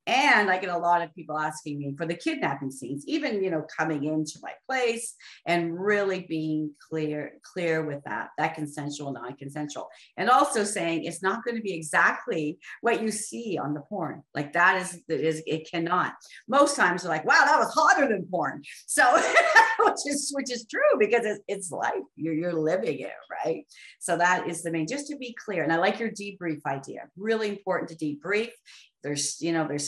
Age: 40-59